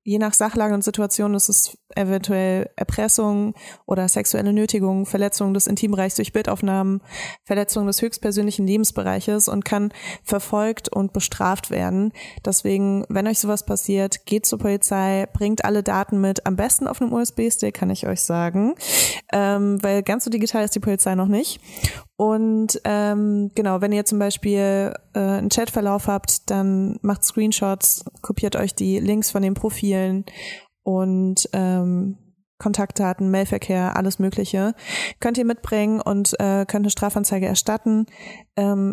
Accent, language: German, German